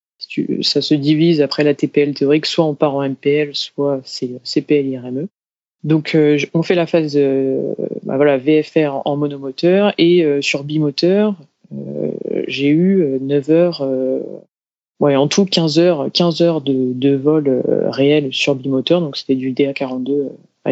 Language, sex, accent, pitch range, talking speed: French, female, French, 140-165 Hz, 145 wpm